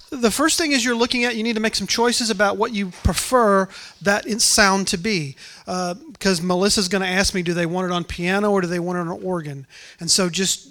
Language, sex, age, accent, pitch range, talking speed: English, male, 40-59, American, 170-200 Hz, 250 wpm